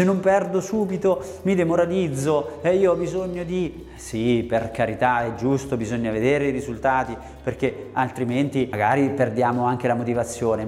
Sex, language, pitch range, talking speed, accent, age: male, Italian, 125-175 Hz, 145 wpm, native, 30-49